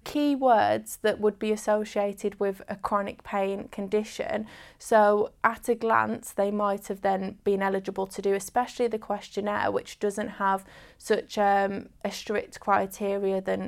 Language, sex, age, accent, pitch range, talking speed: English, female, 10-29, British, 195-220 Hz, 145 wpm